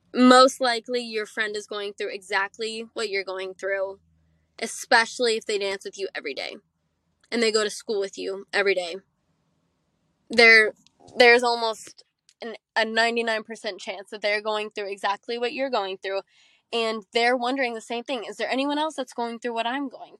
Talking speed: 180 wpm